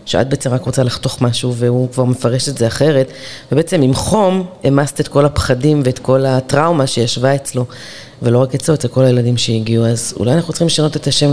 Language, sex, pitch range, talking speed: Hebrew, female, 125-155 Hz, 200 wpm